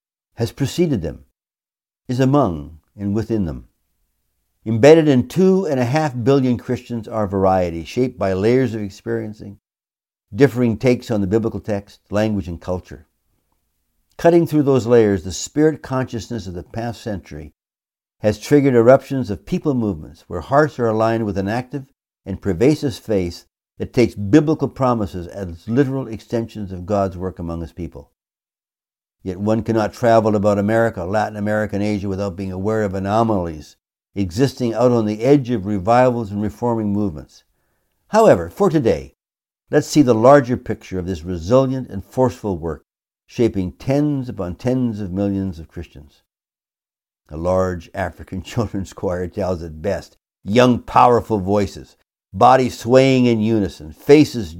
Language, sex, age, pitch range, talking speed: English, male, 60-79, 95-125 Hz, 150 wpm